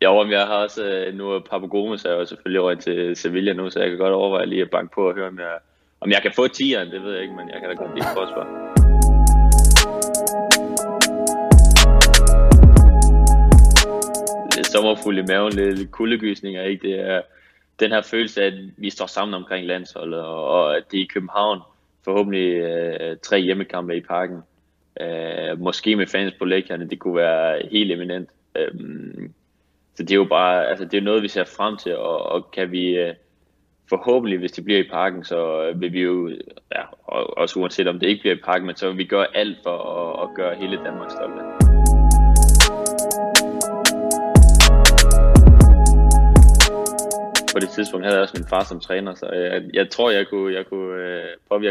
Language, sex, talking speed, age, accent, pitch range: Danish, male, 180 wpm, 20-39, native, 85-100 Hz